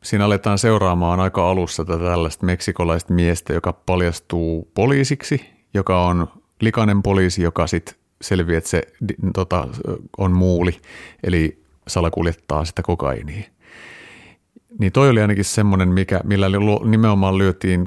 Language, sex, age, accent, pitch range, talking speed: Finnish, male, 30-49, native, 85-100 Hz, 130 wpm